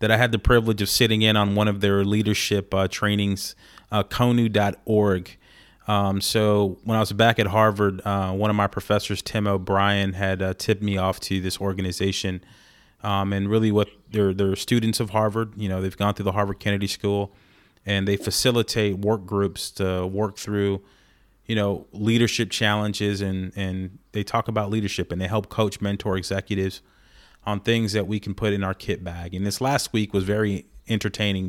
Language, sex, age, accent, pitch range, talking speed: English, male, 30-49, American, 95-110 Hz, 190 wpm